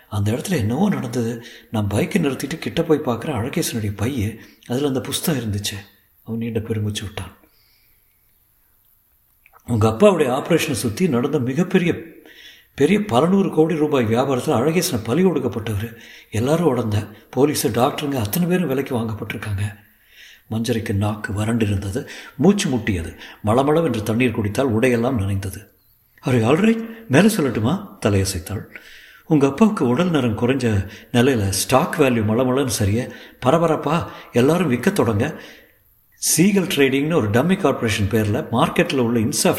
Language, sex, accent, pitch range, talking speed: Tamil, male, native, 110-155 Hz, 120 wpm